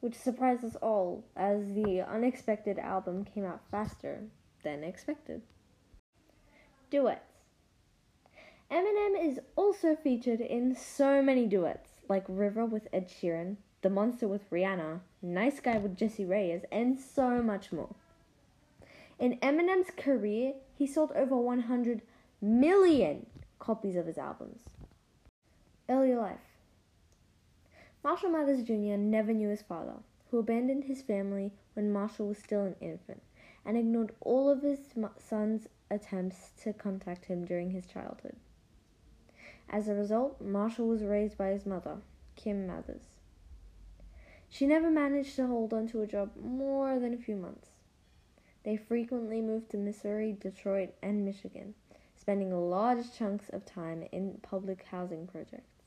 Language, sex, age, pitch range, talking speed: English, female, 10-29, 185-245 Hz, 135 wpm